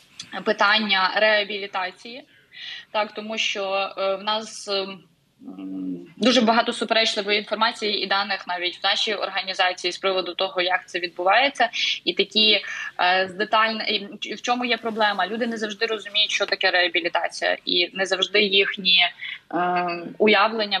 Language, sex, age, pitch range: Ukrainian, female, 20-39, 185-215 Hz